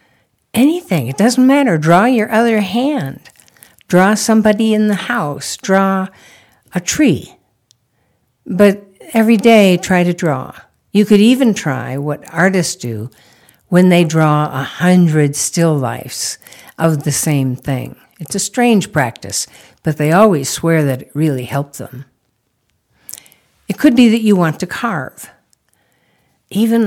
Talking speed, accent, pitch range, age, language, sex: 140 wpm, American, 140-205 Hz, 60-79, English, female